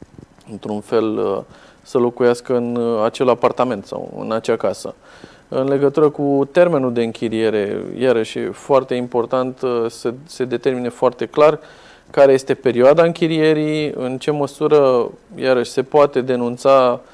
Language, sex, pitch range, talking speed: Romanian, male, 130-155 Hz, 130 wpm